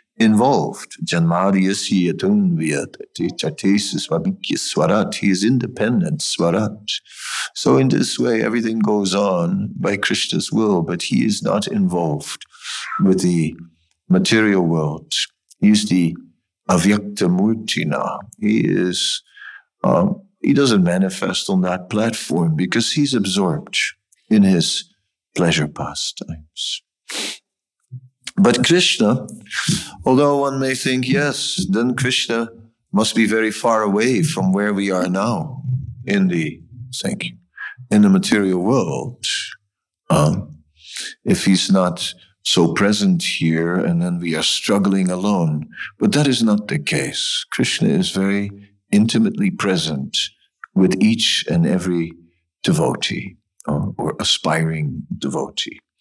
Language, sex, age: English, male, 60-79